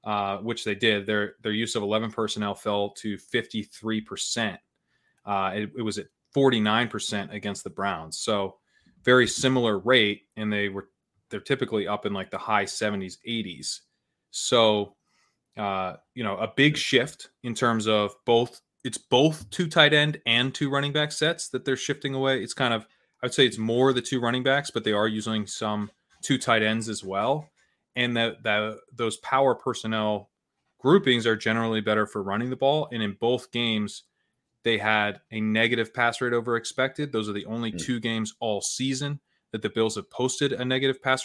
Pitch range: 105-130 Hz